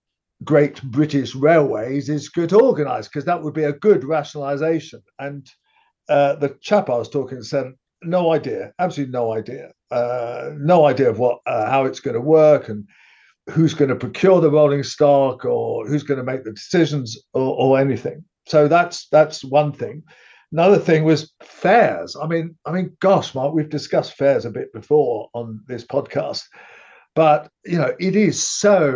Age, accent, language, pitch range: 50-69, British, English, 130-160 Hz